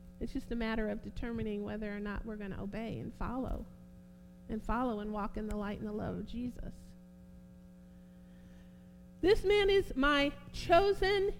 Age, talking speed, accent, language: 50-69, 170 wpm, American, English